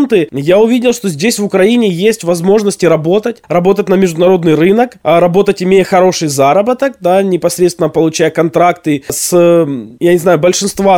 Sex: male